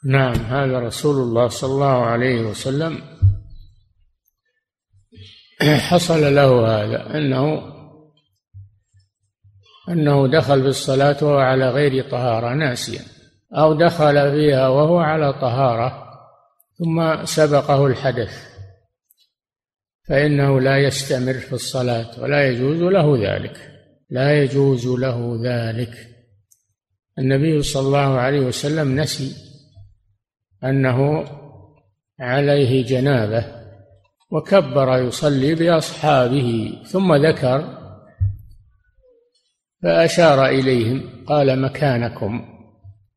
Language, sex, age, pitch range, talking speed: Arabic, male, 60-79, 115-145 Hz, 85 wpm